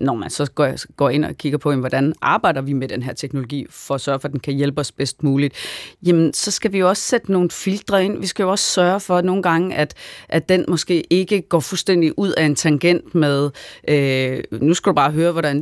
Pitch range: 140-180 Hz